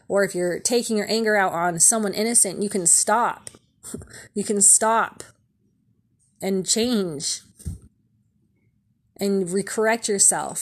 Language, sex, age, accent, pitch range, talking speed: English, female, 20-39, American, 185-220 Hz, 120 wpm